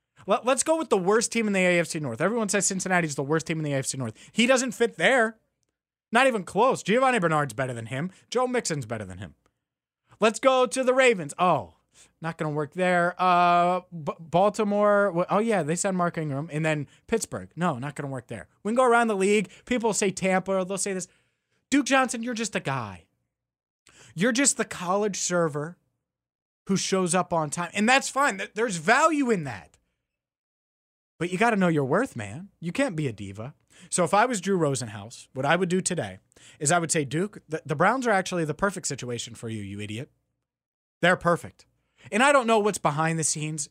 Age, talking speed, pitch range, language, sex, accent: 30-49, 205 wpm, 145-205 Hz, English, male, American